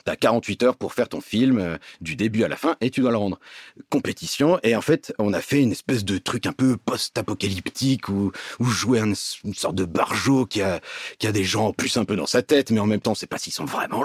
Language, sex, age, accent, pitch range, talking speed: French, male, 40-59, French, 105-155 Hz, 275 wpm